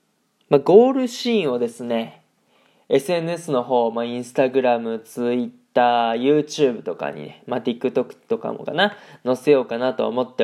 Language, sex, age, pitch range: Japanese, male, 20-39, 120-150 Hz